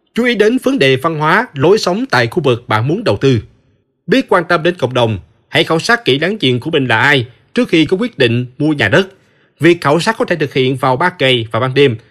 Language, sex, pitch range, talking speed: Vietnamese, male, 120-195 Hz, 265 wpm